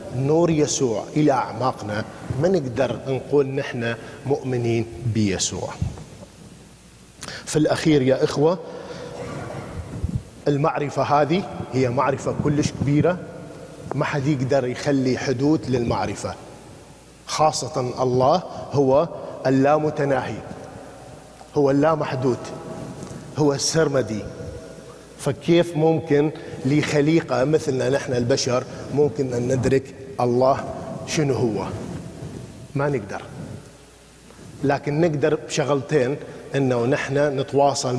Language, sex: English, male